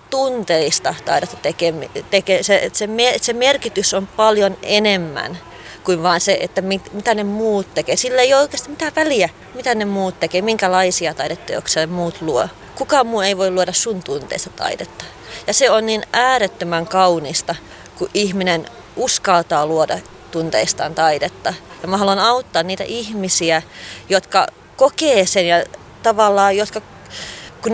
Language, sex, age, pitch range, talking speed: Finnish, female, 30-49, 175-215 Hz, 135 wpm